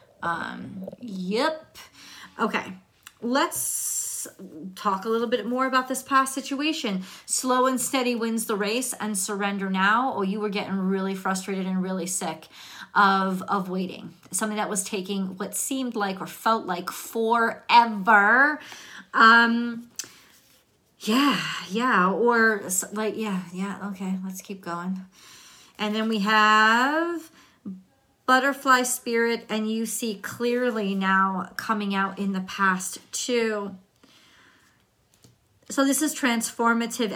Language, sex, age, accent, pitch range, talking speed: English, female, 40-59, American, 185-230 Hz, 125 wpm